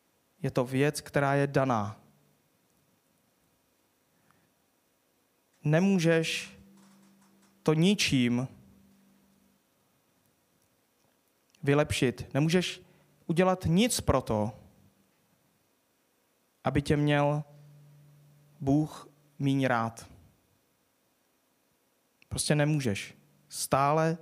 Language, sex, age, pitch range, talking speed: Czech, male, 20-39, 95-150 Hz, 60 wpm